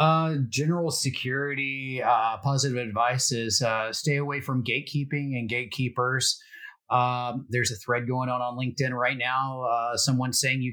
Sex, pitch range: male, 120-135 Hz